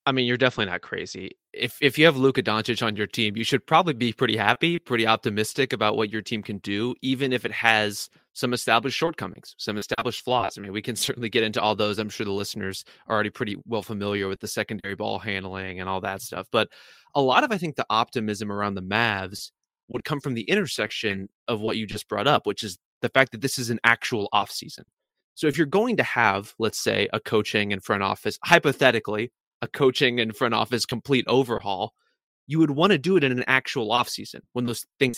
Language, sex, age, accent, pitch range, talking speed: English, male, 20-39, American, 105-125 Hz, 225 wpm